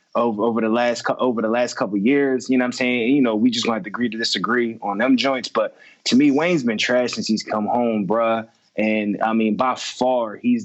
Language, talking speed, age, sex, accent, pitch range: English, 250 wpm, 20-39, male, American, 110-135 Hz